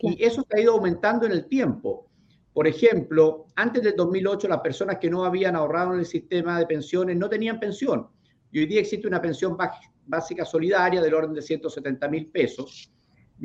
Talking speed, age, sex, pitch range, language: 190 wpm, 50-69, male, 160-205 Hz, Spanish